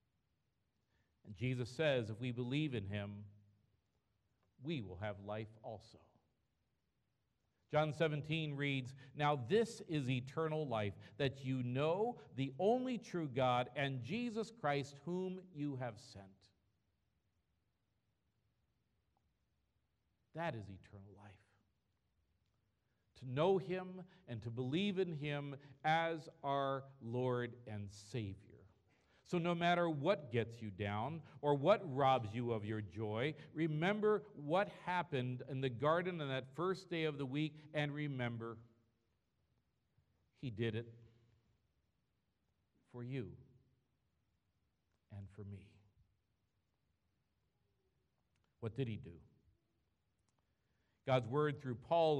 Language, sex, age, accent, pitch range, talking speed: English, male, 50-69, American, 105-150 Hz, 110 wpm